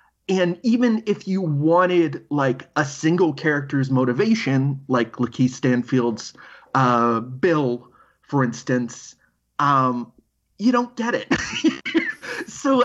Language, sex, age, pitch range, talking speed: English, male, 30-49, 130-195 Hz, 105 wpm